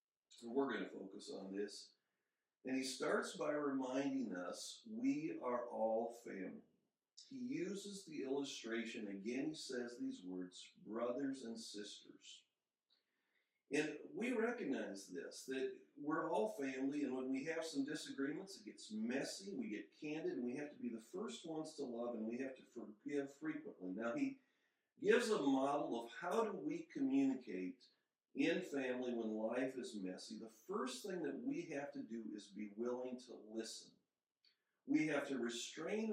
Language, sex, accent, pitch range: English, male, American, 120-185 Hz